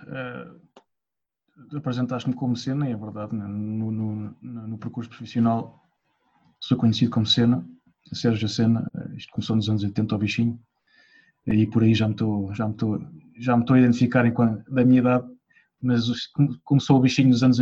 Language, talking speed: English, 165 wpm